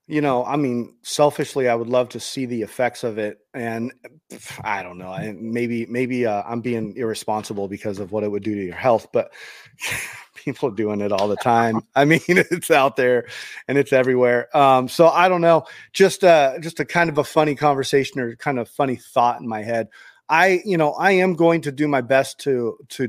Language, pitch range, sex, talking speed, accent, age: English, 115-145 Hz, male, 215 wpm, American, 30-49